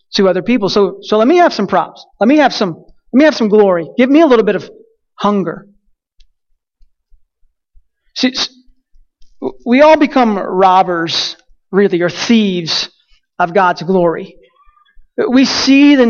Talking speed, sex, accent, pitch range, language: 150 wpm, male, American, 185-225 Hz, English